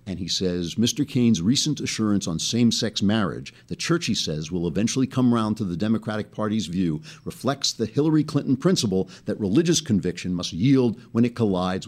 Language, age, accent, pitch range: English, 50-69, American, 100-130 Hz